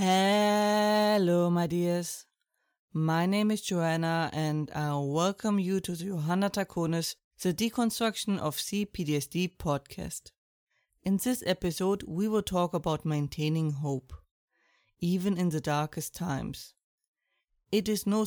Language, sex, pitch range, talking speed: English, female, 155-190 Hz, 120 wpm